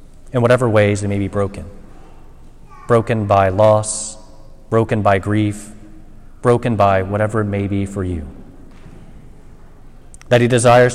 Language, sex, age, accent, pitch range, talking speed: English, male, 30-49, American, 100-120 Hz, 130 wpm